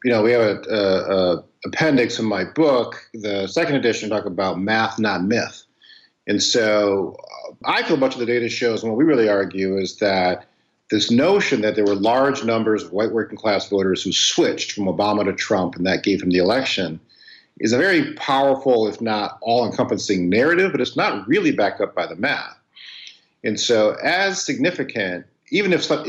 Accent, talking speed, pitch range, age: American, 195 wpm, 100-140 Hz, 50-69